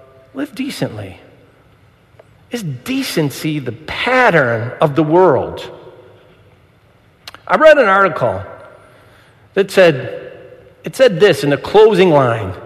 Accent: American